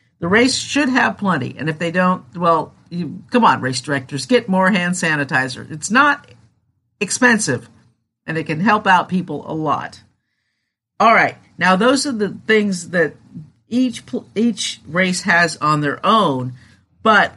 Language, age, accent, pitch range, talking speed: English, 50-69, American, 145-240 Hz, 160 wpm